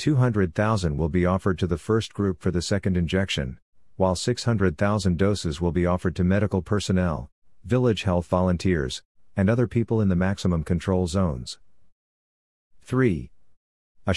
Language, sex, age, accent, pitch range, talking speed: English, male, 50-69, American, 85-100 Hz, 145 wpm